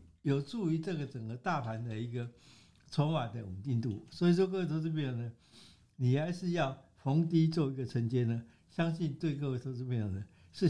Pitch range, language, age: 115-160 Hz, Chinese, 60-79